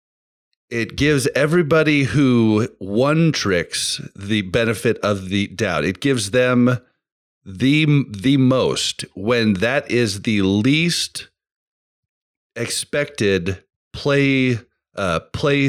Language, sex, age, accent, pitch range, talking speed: English, male, 40-59, American, 95-130 Hz, 90 wpm